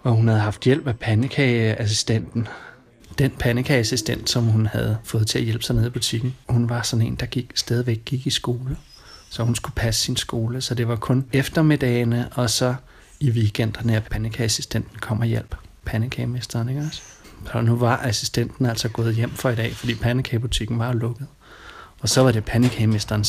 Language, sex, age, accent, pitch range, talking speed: Danish, male, 30-49, native, 110-130 Hz, 185 wpm